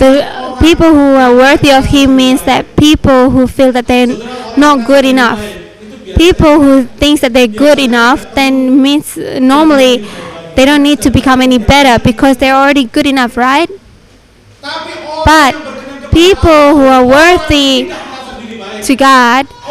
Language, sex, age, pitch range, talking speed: English, female, 20-39, 245-285 Hz, 145 wpm